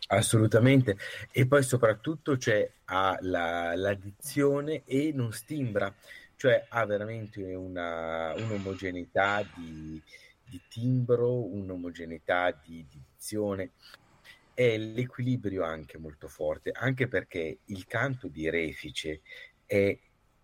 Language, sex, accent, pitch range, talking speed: Italian, male, native, 90-120 Hz, 95 wpm